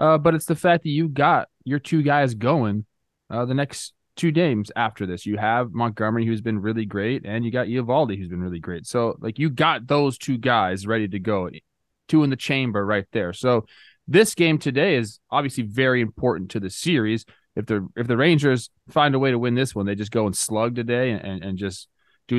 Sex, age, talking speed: male, 20-39, 220 wpm